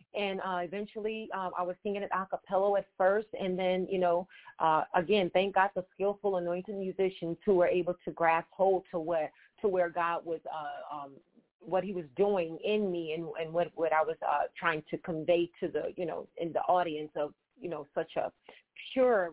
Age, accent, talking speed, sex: 40-59, American, 210 wpm, female